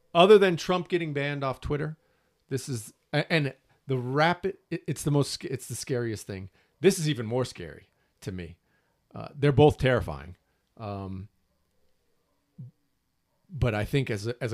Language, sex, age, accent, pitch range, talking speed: English, male, 40-59, American, 115-155 Hz, 150 wpm